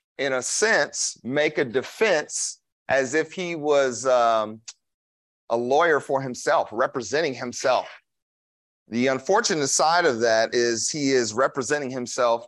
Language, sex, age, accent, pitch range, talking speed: English, male, 40-59, American, 115-150 Hz, 130 wpm